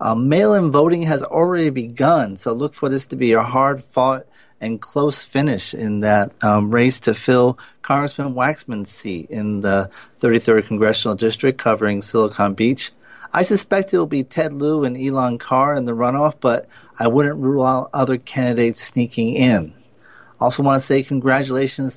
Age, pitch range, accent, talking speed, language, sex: 40-59, 110-140 Hz, American, 175 wpm, English, male